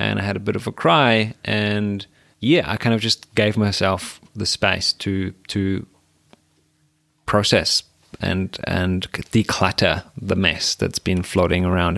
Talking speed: 150 wpm